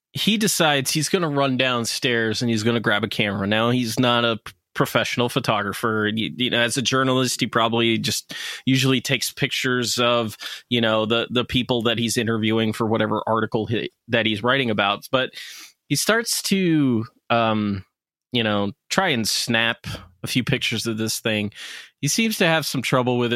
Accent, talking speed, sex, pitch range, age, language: American, 175 wpm, male, 115-140 Hz, 20-39, English